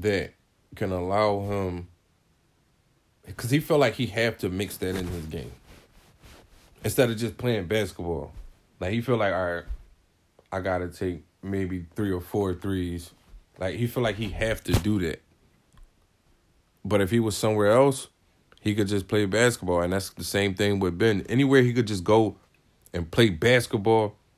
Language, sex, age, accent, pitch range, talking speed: English, male, 20-39, American, 90-115 Hz, 175 wpm